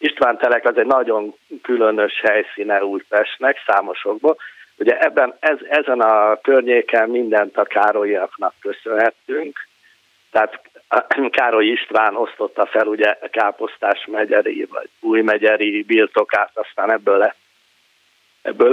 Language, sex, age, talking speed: Hungarian, male, 50-69, 110 wpm